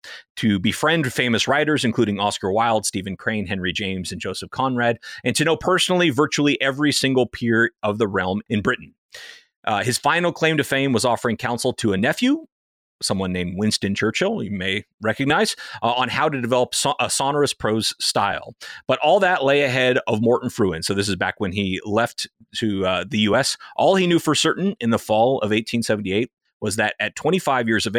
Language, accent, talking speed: English, American, 195 wpm